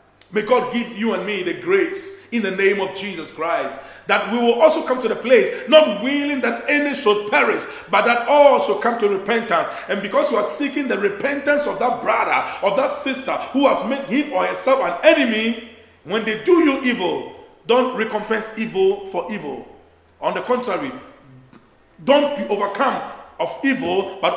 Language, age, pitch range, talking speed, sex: English, 40-59, 175-280 Hz, 185 wpm, male